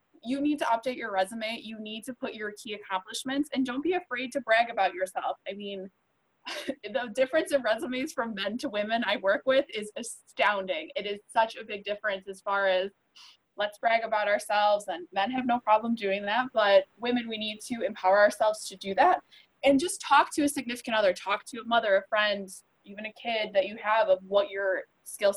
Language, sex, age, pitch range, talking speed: English, female, 20-39, 200-255 Hz, 210 wpm